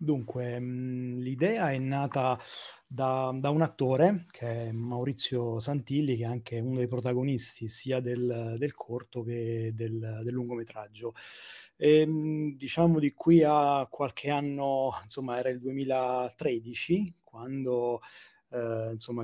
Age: 20-39